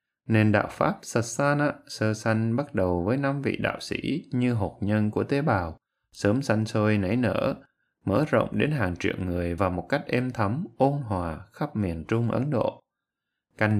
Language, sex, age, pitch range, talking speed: Vietnamese, male, 20-39, 95-130 Hz, 185 wpm